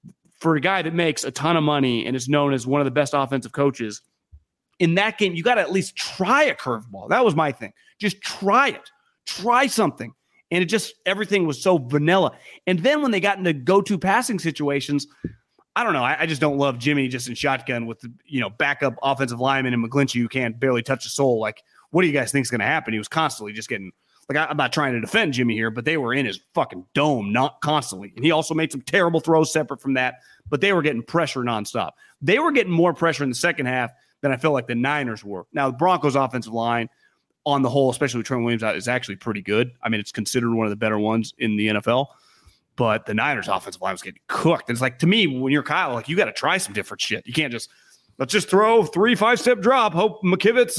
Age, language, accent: 30-49, English, American